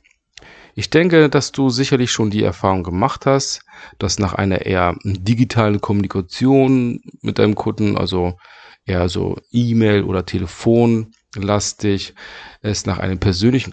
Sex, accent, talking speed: male, German, 130 wpm